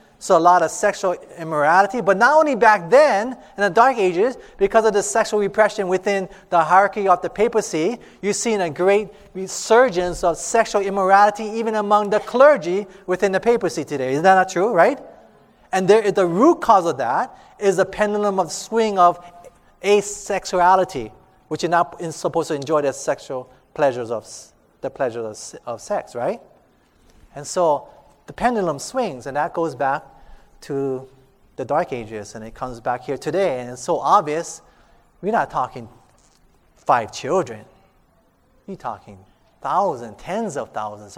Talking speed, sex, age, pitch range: 165 wpm, male, 30-49, 135-205 Hz